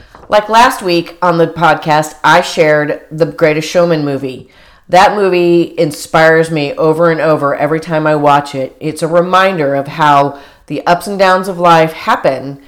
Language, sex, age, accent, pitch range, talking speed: English, female, 40-59, American, 155-215 Hz, 170 wpm